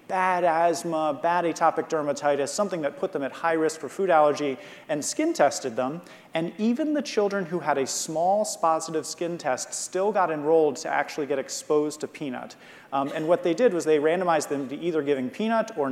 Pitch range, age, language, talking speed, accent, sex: 135-165 Hz, 30-49, English, 200 wpm, American, male